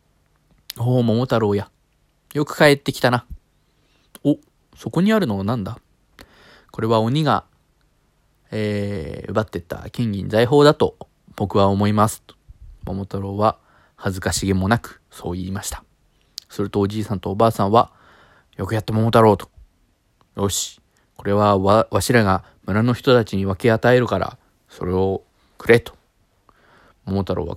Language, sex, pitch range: Japanese, male, 95-115 Hz